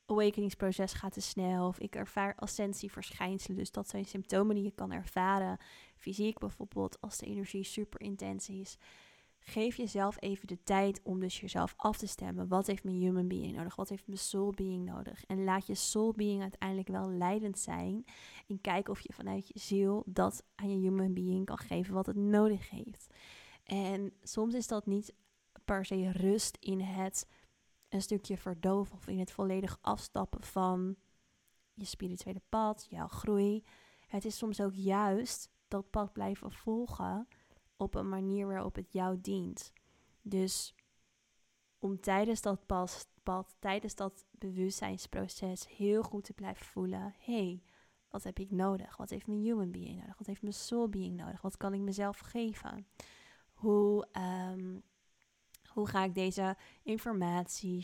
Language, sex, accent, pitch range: Dutch, female, Dutch, 185-205 Hz